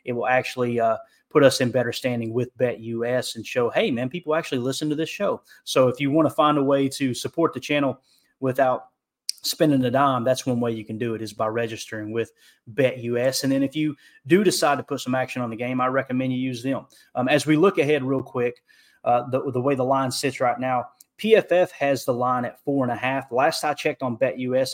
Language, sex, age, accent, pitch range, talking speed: English, male, 20-39, American, 120-140 Hz, 235 wpm